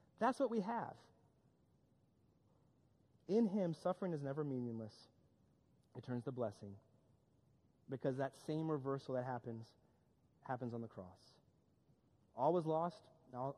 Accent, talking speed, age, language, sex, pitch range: American, 125 wpm, 30-49, English, male, 130-180 Hz